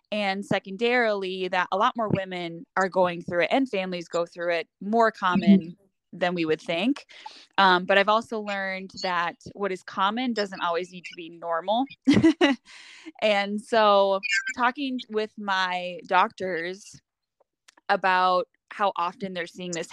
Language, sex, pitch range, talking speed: English, female, 180-220 Hz, 150 wpm